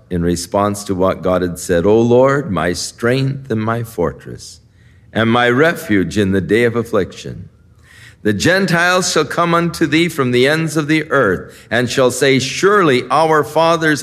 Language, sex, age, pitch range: English, male, 50-69, 100-135 Hz